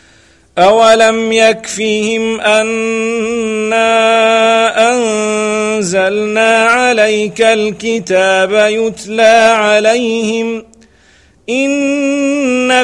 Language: English